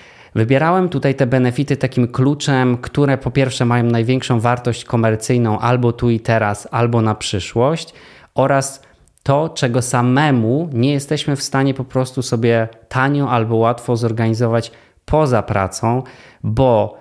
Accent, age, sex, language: native, 20-39, male, Polish